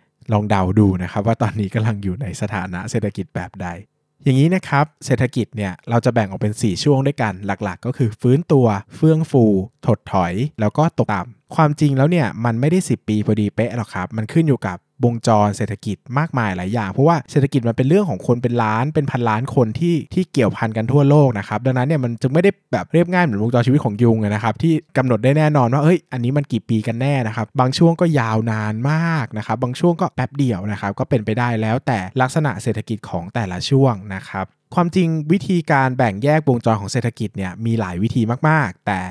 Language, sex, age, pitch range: Thai, male, 20-39, 105-140 Hz